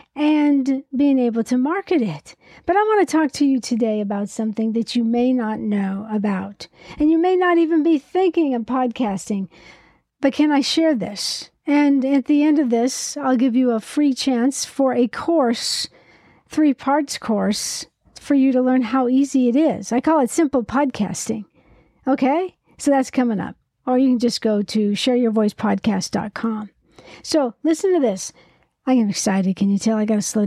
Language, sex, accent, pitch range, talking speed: English, female, American, 220-290 Hz, 185 wpm